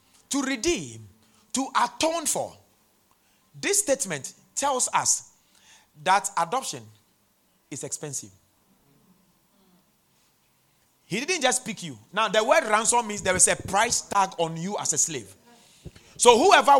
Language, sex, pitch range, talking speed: English, male, 155-260 Hz, 125 wpm